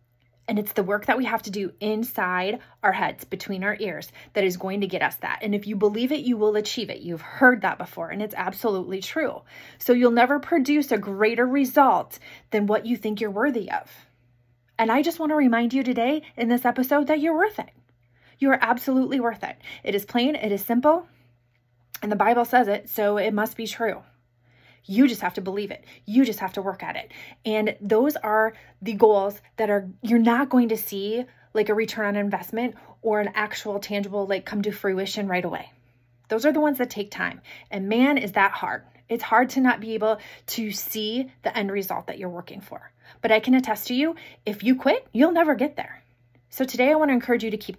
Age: 30-49